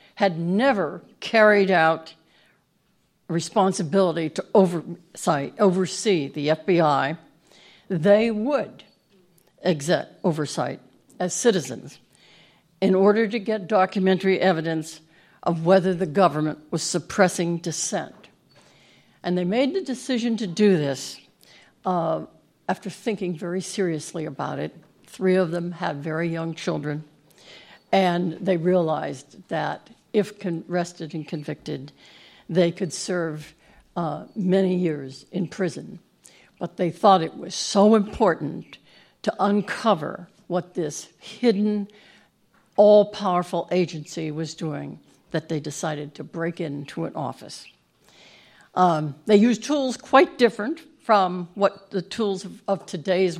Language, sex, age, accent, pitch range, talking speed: English, female, 60-79, American, 165-200 Hz, 115 wpm